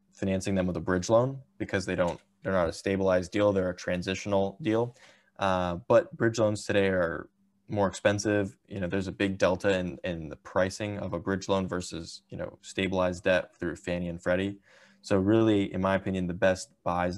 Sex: male